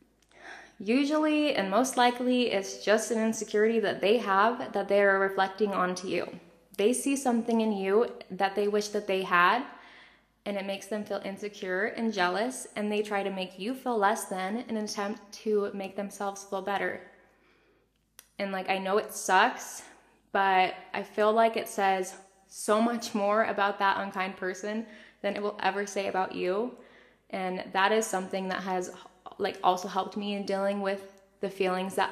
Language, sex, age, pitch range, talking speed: English, female, 10-29, 190-230 Hz, 180 wpm